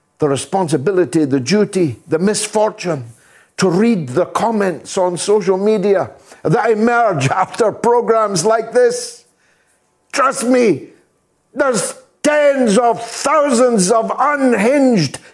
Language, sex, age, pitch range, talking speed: English, male, 60-79, 210-270 Hz, 105 wpm